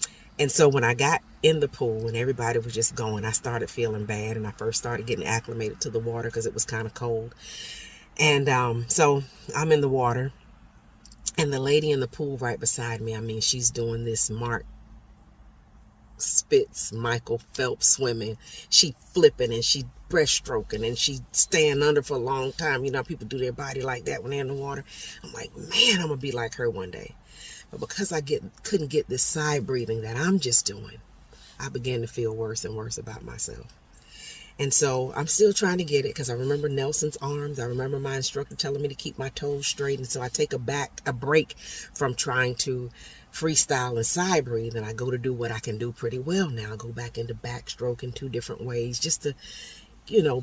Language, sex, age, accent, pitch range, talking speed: English, female, 40-59, American, 115-145 Hz, 215 wpm